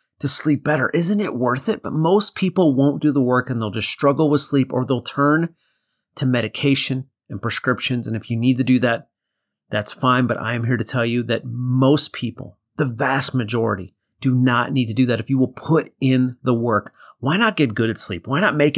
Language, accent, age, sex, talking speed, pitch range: English, American, 30-49, male, 225 wpm, 120-150 Hz